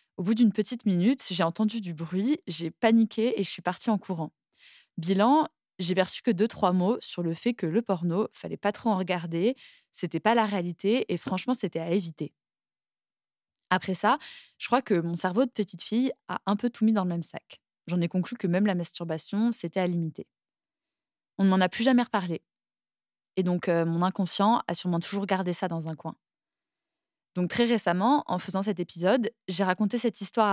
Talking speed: 210 wpm